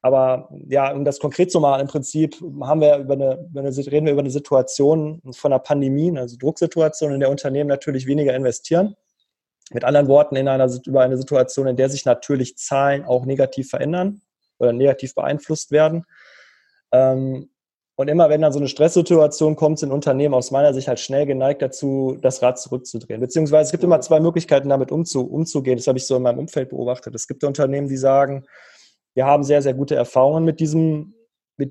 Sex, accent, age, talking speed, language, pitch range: male, German, 20-39, 175 wpm, German, 130-155 Hz